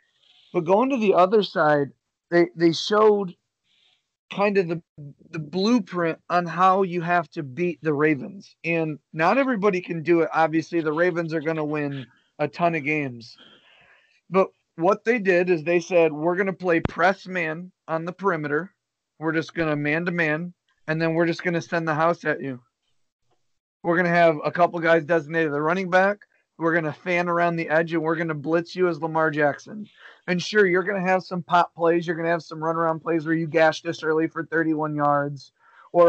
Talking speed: 205 wpm